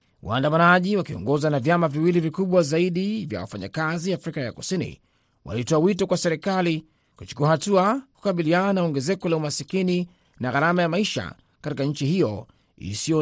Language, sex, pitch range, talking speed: Swahili, male, 135-175 Hz, 145 wpm